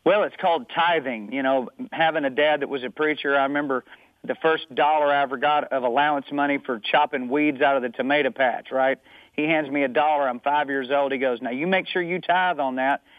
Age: 40-59